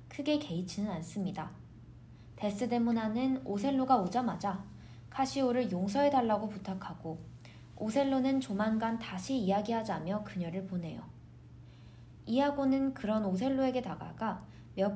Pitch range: 175-260 Hz